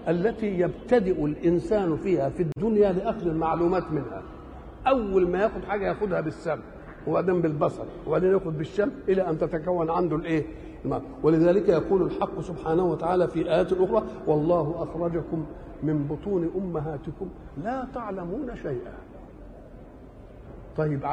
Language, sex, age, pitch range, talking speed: Arabic, male, 60-79, 155-195 Hz, 120 wpm